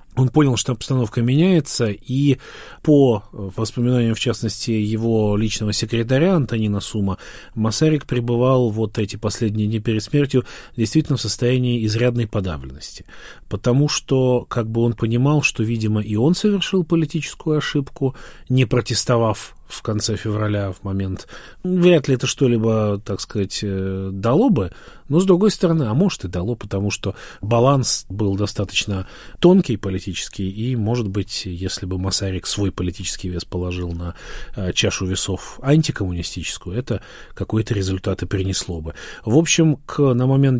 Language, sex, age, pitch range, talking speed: Russian, male, 30-49, 100-135 Hz, 140 wpm